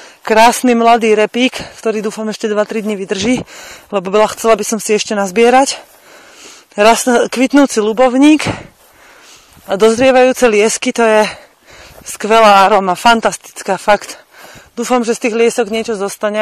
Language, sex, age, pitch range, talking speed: Slovak, female, 30-49, 195-230 Hz, 125 wpm